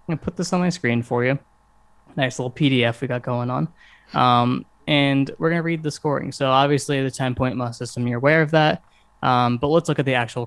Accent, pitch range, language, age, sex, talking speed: American, 125-145 Hz, English, 20-39, male, 240 wpm